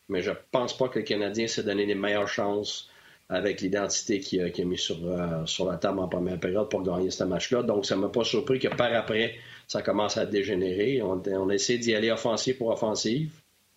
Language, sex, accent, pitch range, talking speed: French, male, Canadian, 100-115 Hz, 230 wpm